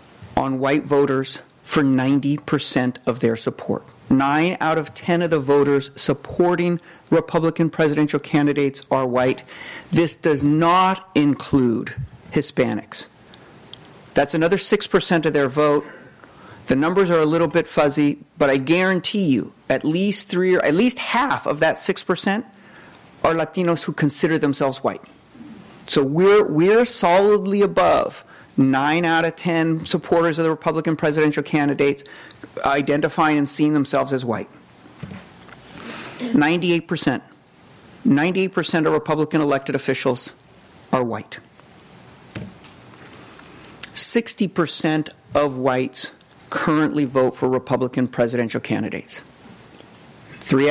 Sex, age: male, 40-59